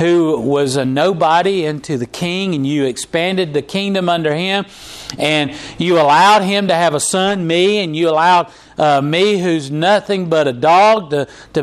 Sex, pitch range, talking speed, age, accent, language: male, 135-190 Hz, 180 wpm, 50-69, American, English